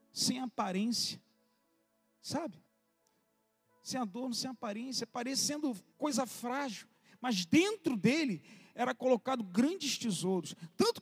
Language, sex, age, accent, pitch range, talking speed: Portuguese, male, 40-59, Brazilian, 235-345 Hz, 100 wpm